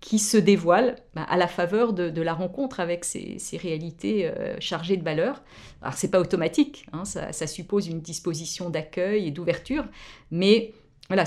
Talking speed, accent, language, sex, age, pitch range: 175 wpm, French, French, female, 50-69, 170-210 Hz